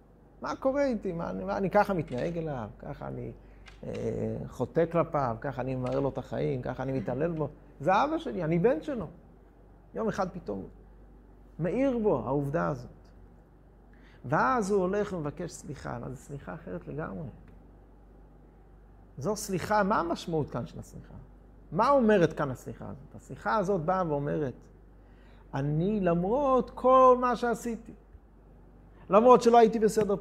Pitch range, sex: 150-220 Hz, male